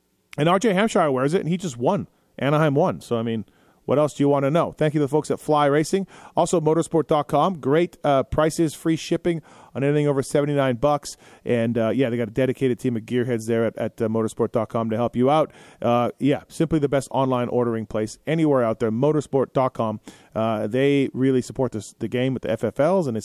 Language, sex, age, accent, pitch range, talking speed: English, male, 30-49, American, 120-165 Hz, 215 wpm